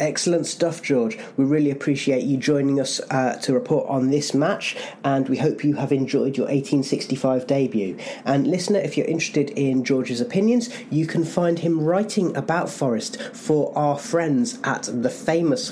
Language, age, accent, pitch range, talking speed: English, 30-49, British, 125-170 Hz, 170 wpm